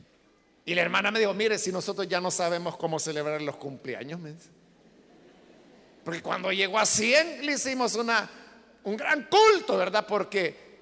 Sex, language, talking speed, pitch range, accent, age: male, Spanish, 165 wpm, 185-265 Hz, Mexican, 50-69